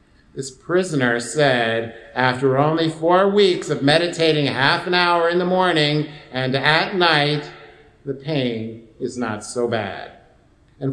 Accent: American